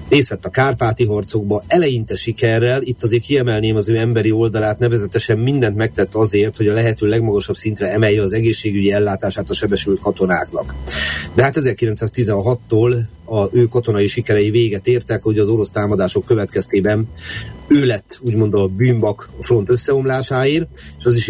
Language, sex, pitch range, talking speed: Hungarian, male, 100-115 Hz, 150 wpm